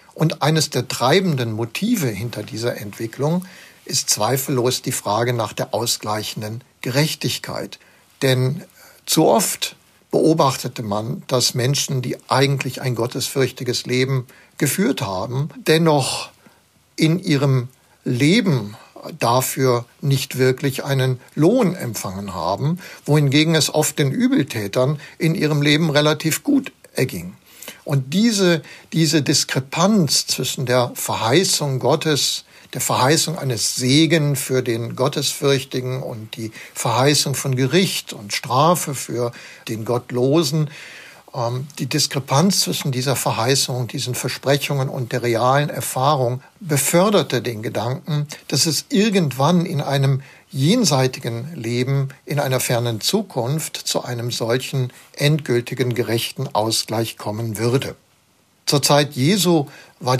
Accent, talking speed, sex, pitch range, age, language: German, 115 wpm, male, 120-150 Hz, 60-79, German